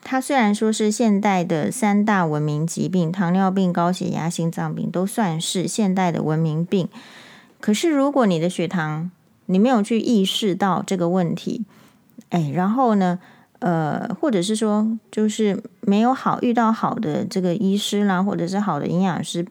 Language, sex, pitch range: Chinese, female, 180-230 Hz